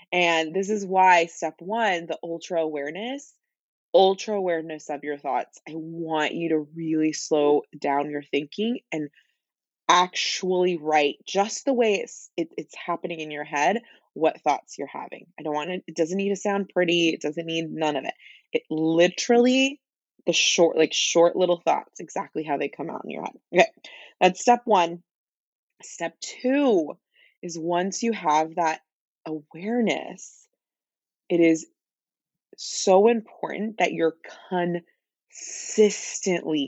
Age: 20-39